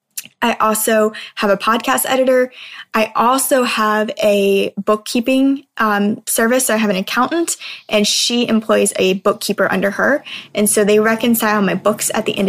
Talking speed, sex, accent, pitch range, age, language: 165 wpm, female, American, 195-230 Hz, 20-39, English